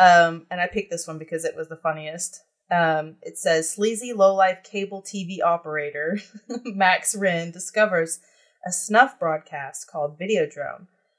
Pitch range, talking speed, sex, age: 160-195 Hz, 145 wpm, female, 30-49